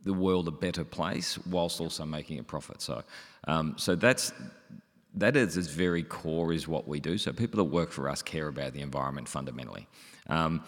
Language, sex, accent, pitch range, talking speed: English, male, Australian, 75-90 Hz, 195 wpm